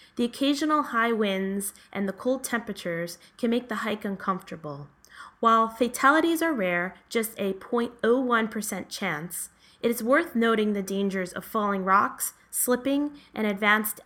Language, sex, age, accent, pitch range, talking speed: English, female, 20-39, American, 190-240 Hz, 140 wpm